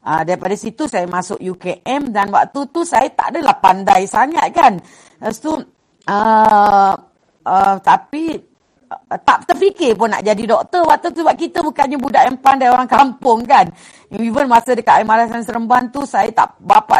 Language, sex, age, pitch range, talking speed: Malay, female, 40-59, 200-270 Hz, 170 wpm